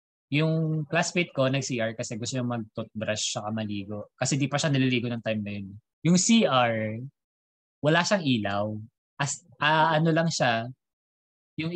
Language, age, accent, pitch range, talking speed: English, 20-39, Filipino, 110-160 Hz, 150 wpm